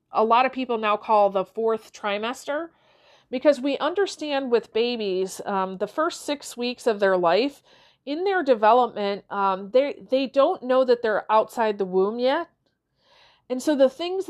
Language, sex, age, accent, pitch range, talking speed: English, female, 40-59, American, 210-270 Hz, 170 wpm